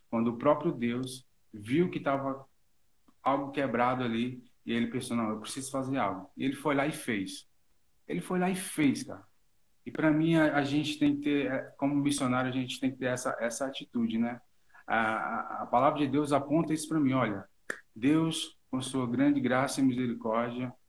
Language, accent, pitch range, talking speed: Portuguese, Brazilian, 120-145 Hz, 195 wpm